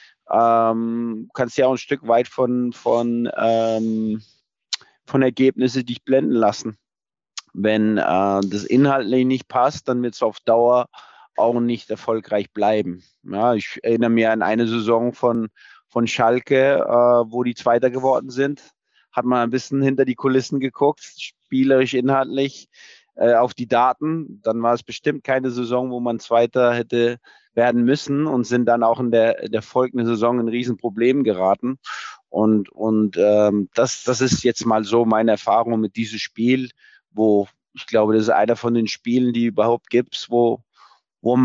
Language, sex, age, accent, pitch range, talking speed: German, male, 30-49, German, 115-135 Hz, 160 wpm